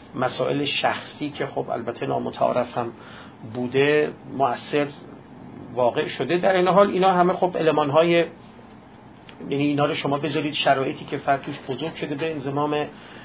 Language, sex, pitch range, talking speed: Persian, male, 125-160 Hz, 130 wpm